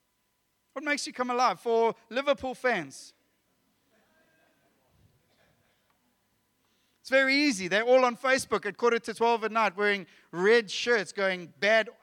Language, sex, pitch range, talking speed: English, male, 220-260 Hz, 130 wpm